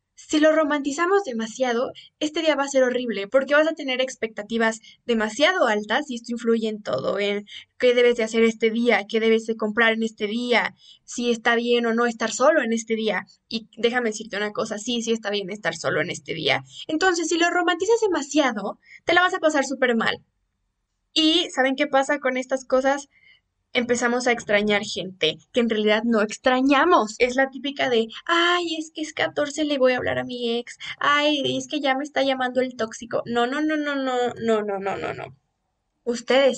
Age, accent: 10-29, Mexican